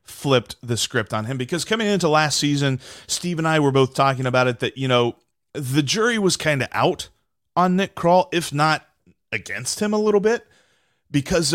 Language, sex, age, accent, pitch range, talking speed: English, male, 30-49, American, 115-165 Hz, 195 wpm